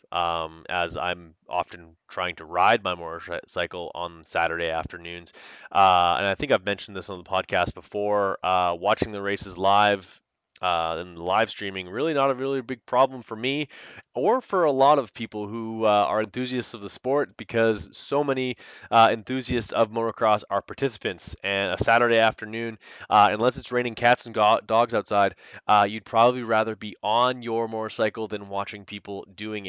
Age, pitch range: 20-39, 95-115 Hz